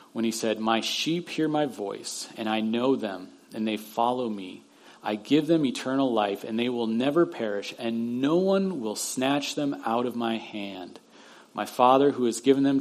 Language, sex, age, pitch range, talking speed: English, male, 40-59, 110-135 Hz, 195 wpm